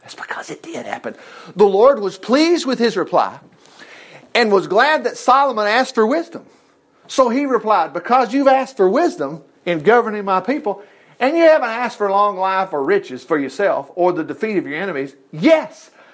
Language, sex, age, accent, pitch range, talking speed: English, male, 50-69, American, 185-260 Hz, 185 wpm